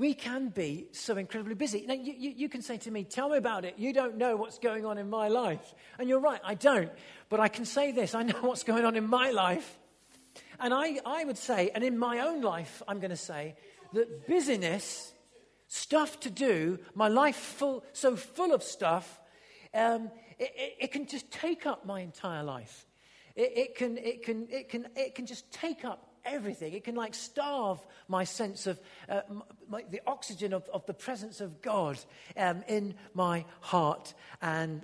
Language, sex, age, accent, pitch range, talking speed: English, male, 40-59, British, 190-260 Hz, 200 wpm